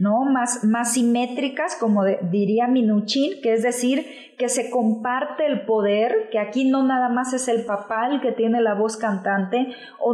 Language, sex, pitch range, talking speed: Spanish, female, 225-265 Hz, 185 wpm